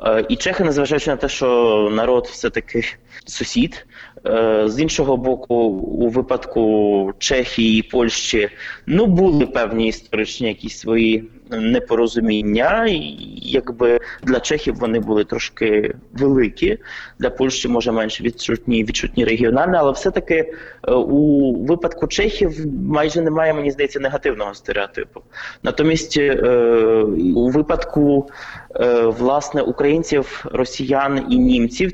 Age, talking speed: 20-39, 110 wpm